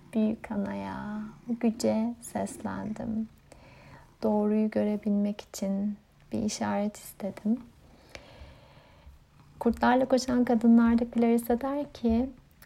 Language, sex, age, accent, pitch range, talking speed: Turkish, female, 30-49, native, 200-225 Hz, 75 wpm